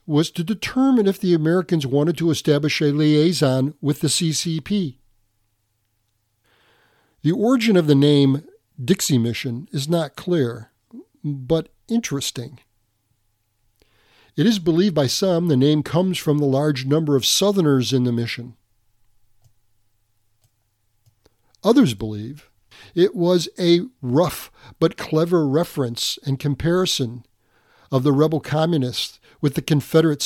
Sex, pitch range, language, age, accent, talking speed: male, 105-155 Hz, English, 50-69, American, 120 wpm